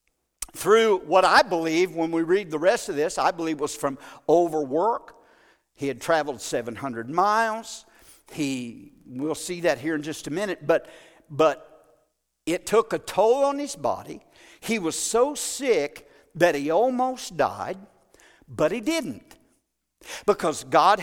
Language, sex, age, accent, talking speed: English, male, 60-79, American, 150 wpm